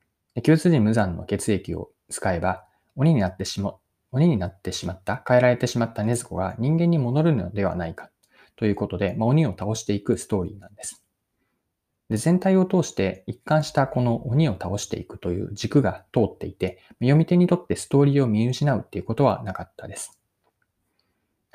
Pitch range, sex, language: 100-150 Hz, male, Japanese